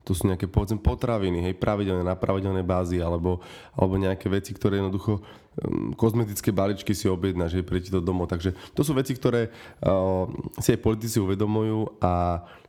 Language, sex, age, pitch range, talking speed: Slovak, male, 20-39, 95-115 Hz, 170 wpm